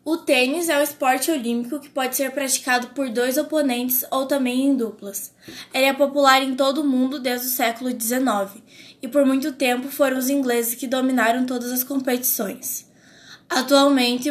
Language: Portuguese